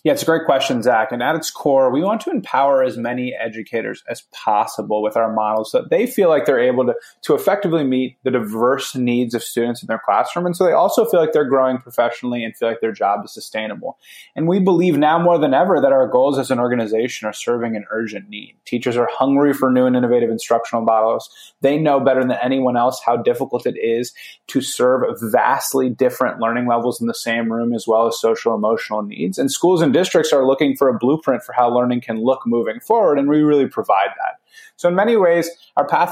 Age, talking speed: 20-39, 225 wpm